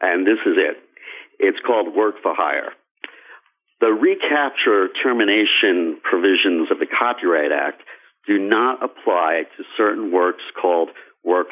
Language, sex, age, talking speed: English, male, 50-69, 130 wpm